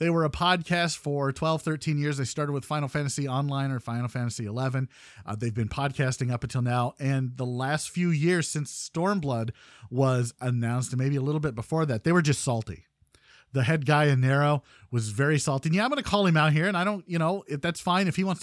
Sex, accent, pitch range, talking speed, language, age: male, American, 135-175 Hz, 235 wpm, English, 40-59